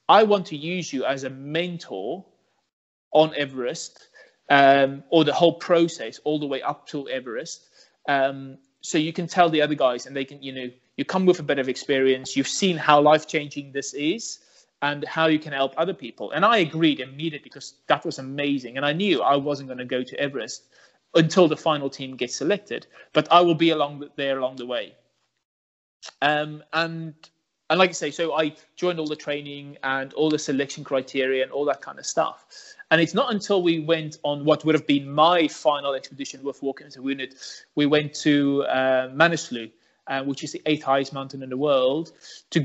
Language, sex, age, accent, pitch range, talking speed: English, male, 30-49, British, 135-165 Hz, 205 wpm